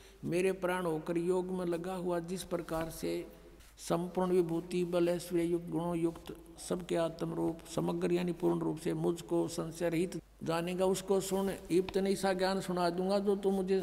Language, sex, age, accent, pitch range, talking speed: Hindi, male, 60-79, native, 170-190 Hz, 170 wpm